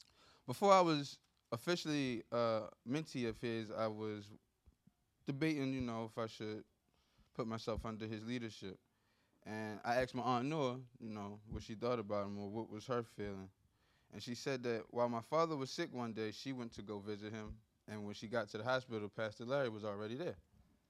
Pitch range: 110-140 Hz